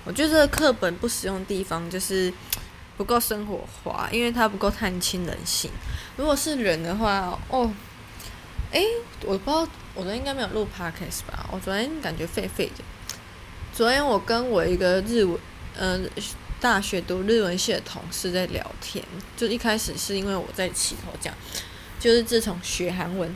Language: Chinese